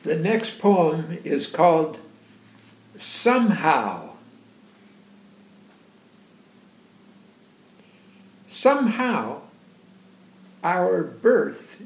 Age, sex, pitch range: 60-79, male, 175-225 Hz